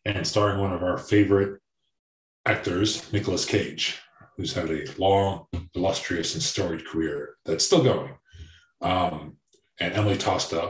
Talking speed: 135 wpm